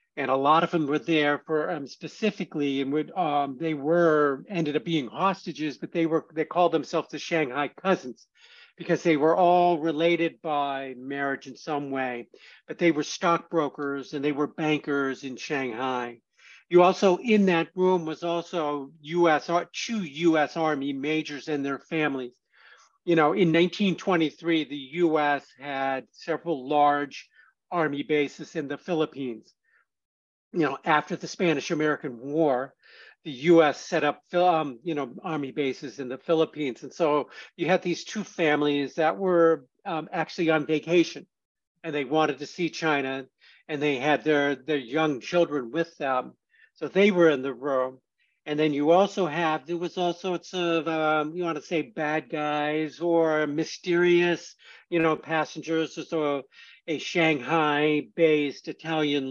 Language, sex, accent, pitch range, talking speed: English, male, American, 145-170 Hz, 160 wpm